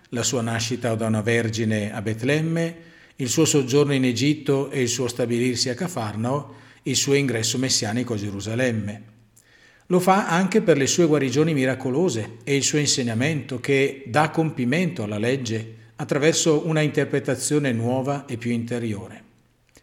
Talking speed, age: 150 wpm, 50-69